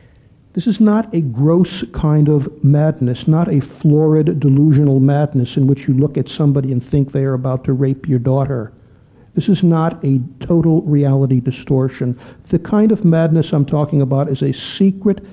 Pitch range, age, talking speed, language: 135-175 Hz, 60-79, 175 wpm, English